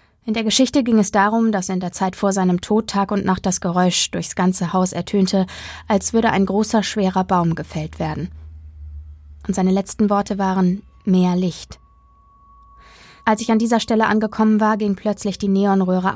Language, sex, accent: German, female, German